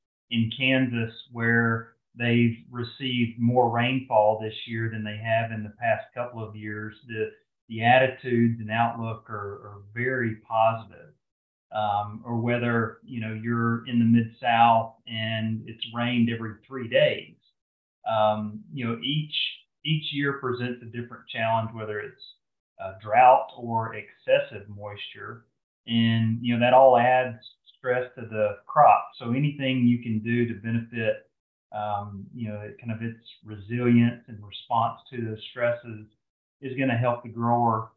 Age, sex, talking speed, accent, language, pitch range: 30-49, male, 150 wpm, American, English, 110-125 Hz